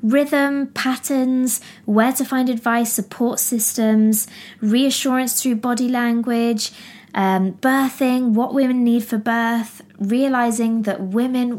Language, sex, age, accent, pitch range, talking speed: English, female, 20-39, British, 200-255 Hz, 115 wpm